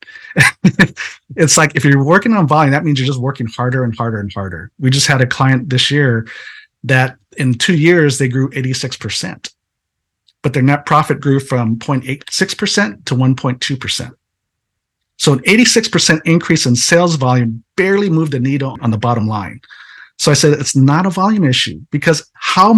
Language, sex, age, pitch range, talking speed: English, male, 50-69, 120-155 Hz, 170 wpm